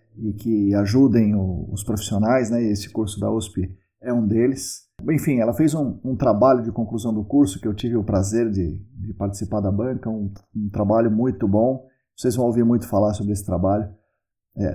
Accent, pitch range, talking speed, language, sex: Brazilian, 100-130 Hz, 190 wpm, Portuguese, male